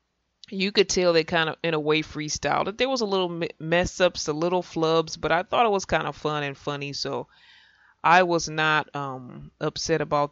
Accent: American